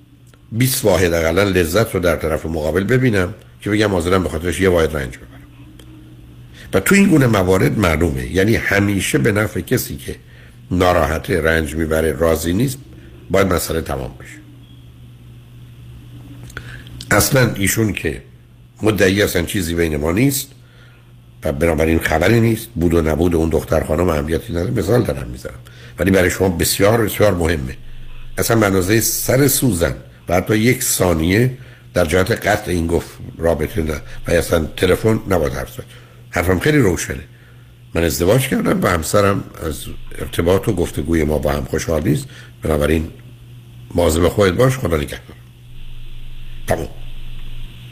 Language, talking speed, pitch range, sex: Persian, 140 wpm, 75-120 Hz, male